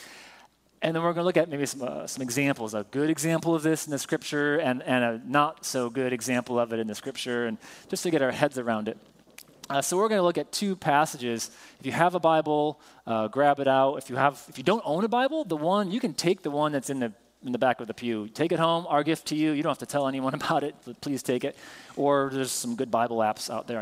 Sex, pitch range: male, 120-155 Hz